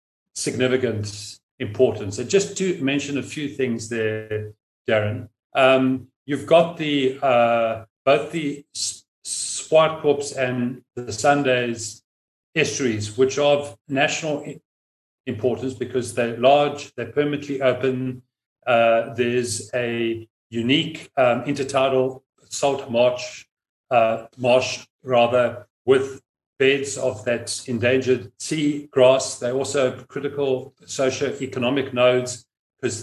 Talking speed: 105 wpm